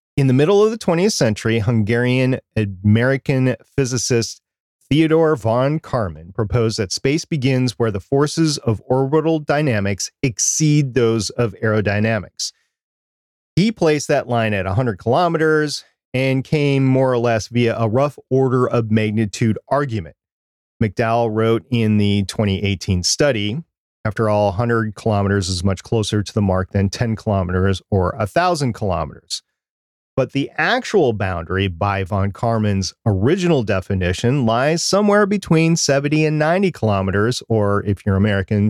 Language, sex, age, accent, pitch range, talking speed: English, male, 40-59, American, 105-135 Hz, 135 wpm